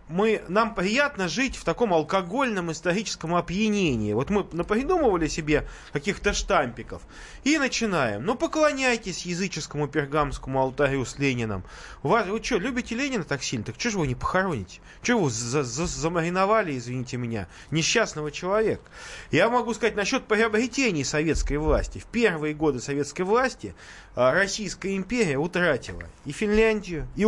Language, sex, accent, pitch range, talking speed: Russian, male, native, 145-215 Hz, 140 wpm